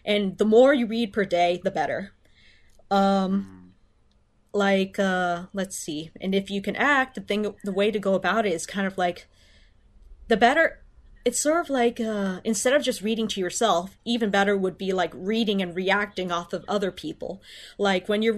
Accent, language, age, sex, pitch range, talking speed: American, English, 30-49, female, 190-230 Hz, 195 wpm